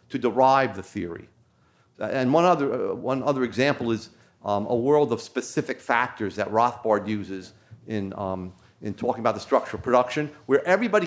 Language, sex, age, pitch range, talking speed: English, male, 40-59, 110-145 Hz, 170 wpm